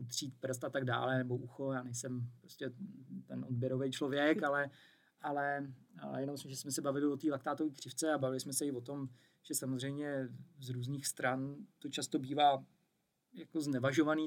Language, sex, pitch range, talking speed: Czech, male, 130-150 Hz, 175 wpm